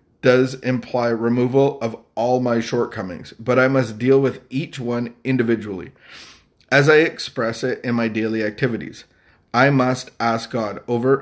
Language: English